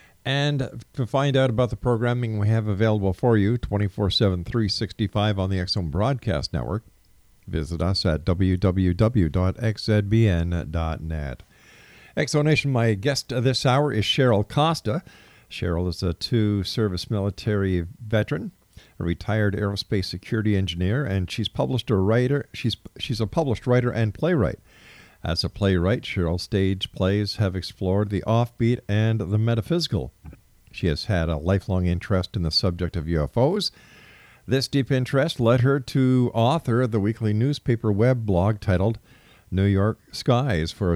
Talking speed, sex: 140 wpm, male